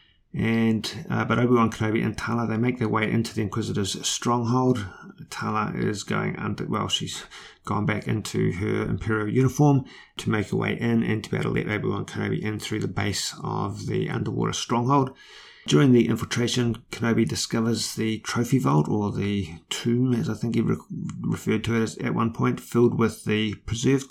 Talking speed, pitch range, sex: 185 wpm, 105-120 Hz, male